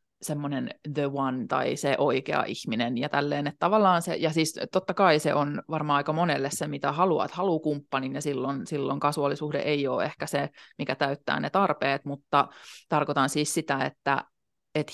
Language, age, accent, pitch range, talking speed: Finnish, 30-49, native, 140-165 Hz, 175 wpm